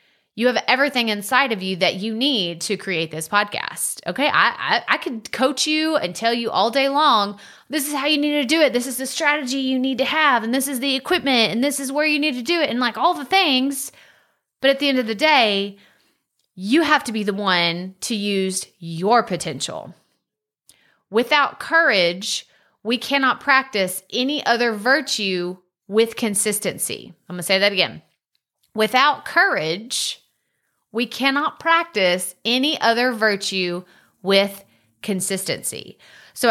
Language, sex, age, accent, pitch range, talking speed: English, female, 30-49, American, 195-270 Hz, 170 wpm